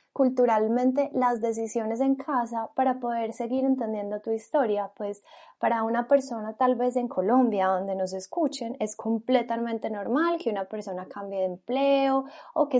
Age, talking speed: 10-29, 155 wpm